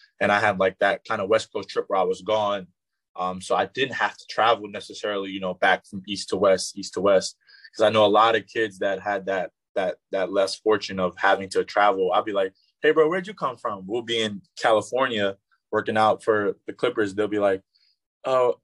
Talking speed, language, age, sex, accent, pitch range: 235 wpm, English, 20-39, male, American, 95-115 Hz